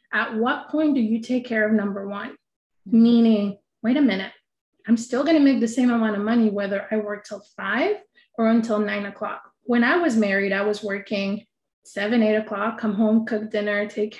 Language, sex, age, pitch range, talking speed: English, female, 20-39, 210-245 Hz, 205 wpm